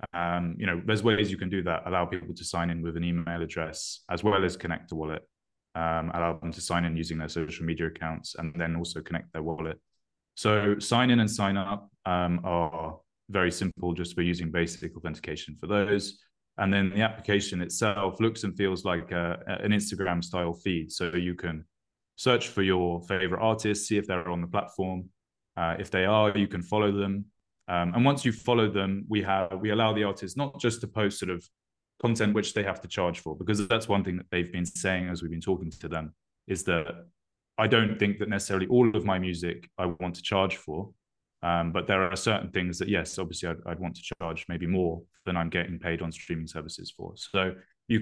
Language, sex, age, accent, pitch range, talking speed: English, male, 20-39, British, 85-100 Hz, 220 wpm